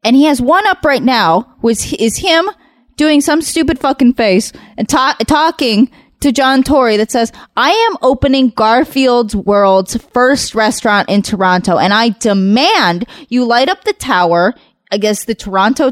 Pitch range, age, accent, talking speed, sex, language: 230-310 Hz, 20-39, American, 165 wpm, female, English